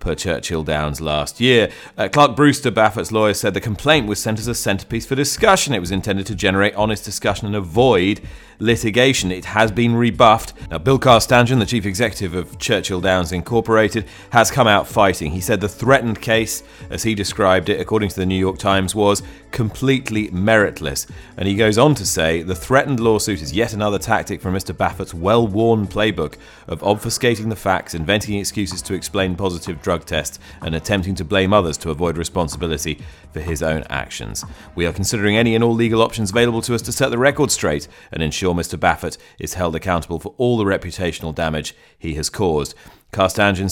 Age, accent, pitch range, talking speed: 30-49, British, 85-110 Hz, 190 wpm